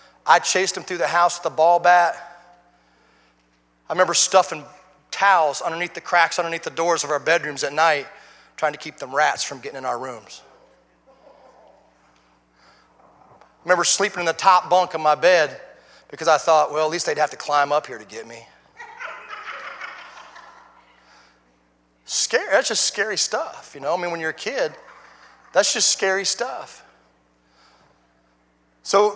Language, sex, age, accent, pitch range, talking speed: English, male, 30-49, American, 150-205 Hz, 160 wpm